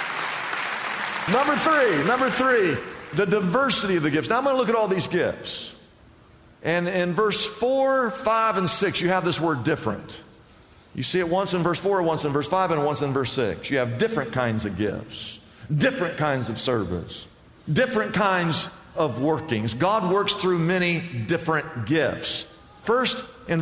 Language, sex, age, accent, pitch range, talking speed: English, male, 50-69, American, 135-185 Hz, 175 wpm